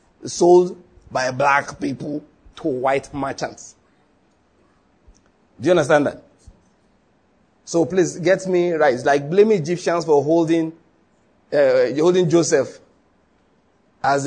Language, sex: English, male